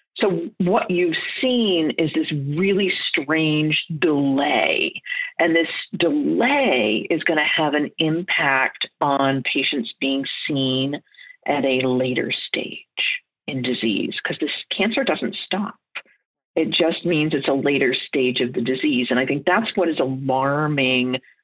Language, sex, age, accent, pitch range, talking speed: English, female, 50-69, American, 140-180 Hz, 140 wpm